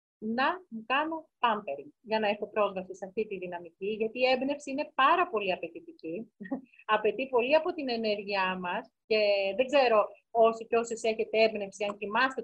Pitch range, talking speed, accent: 215-300 Hz, 160 wpm, native